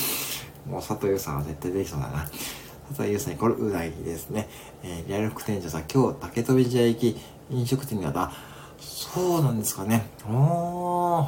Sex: male